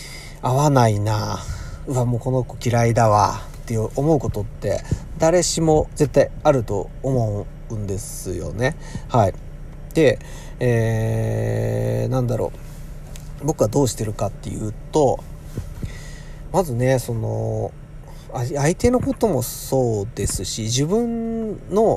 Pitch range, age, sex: 110-150 Hz, 40-59, male